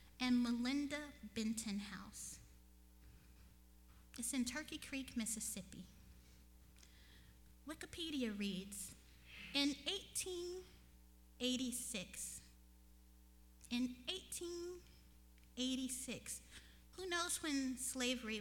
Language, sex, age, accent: English, female, 30-49, American